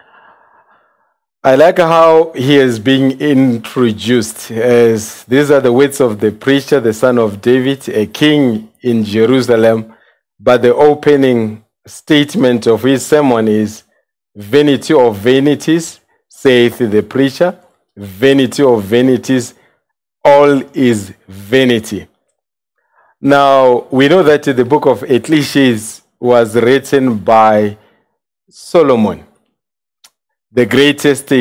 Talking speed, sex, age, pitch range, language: 110 wpm, male, 50-69, 115-140 Hz, English